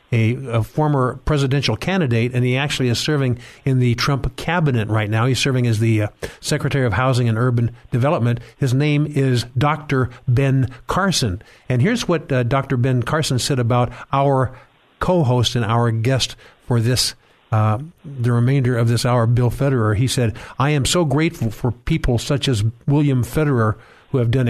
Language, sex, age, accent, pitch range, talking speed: English, male, 50-69, American, 120-140 Hz, 175 wpm